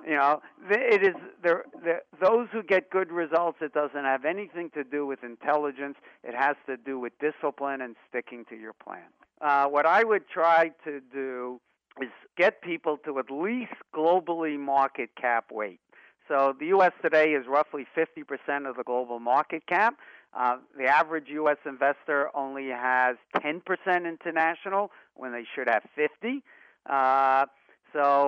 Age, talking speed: 50-69, 155 wpm